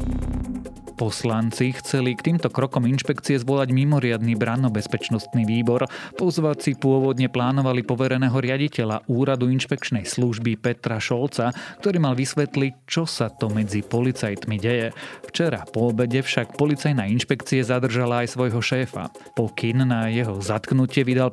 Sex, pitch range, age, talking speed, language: male, 110-135 Hz, 30-49, 125 wpm, Slovak